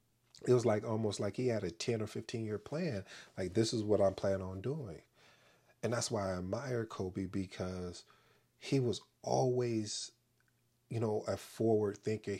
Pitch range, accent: 95-105 Hz, American